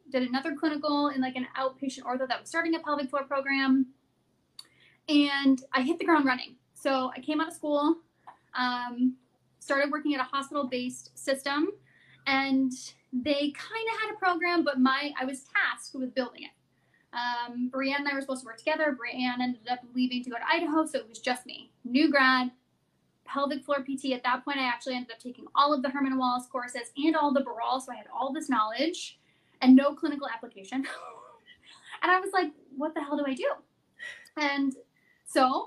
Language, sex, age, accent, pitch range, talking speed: English, female, 10-29, American, 255-300 Hz, 195 wpm